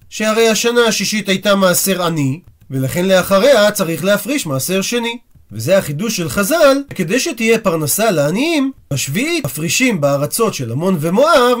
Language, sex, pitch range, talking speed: Hebrew, male, 175-245 Hz, 135 wpm